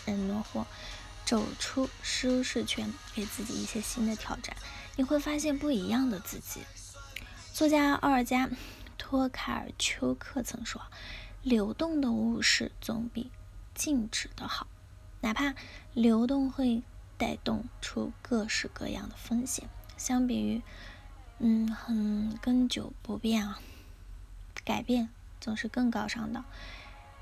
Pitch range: 215-255 Hz